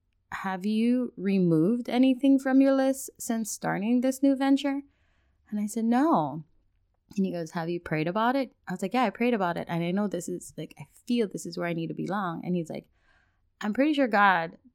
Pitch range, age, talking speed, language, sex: 170-230 Hz, 20-39, 220 wpm, English, female